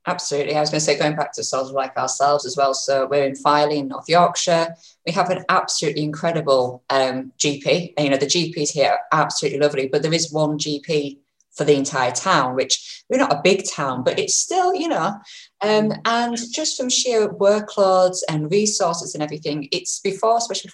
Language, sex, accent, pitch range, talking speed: English, female, British, 140-180 Hz, 205 wpm